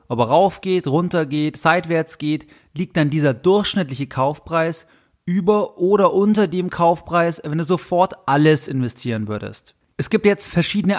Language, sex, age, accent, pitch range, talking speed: German, male, 30-49, German, 135-170 Hz, 155 wpm